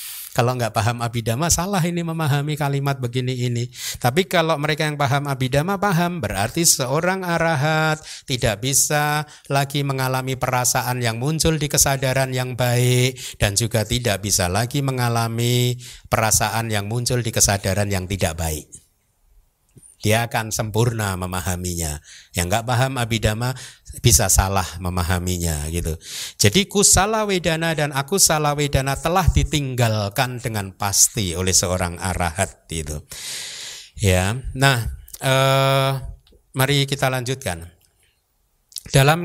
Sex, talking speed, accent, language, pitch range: male, 120 wpm, native, Indonesian, 105-140 Hz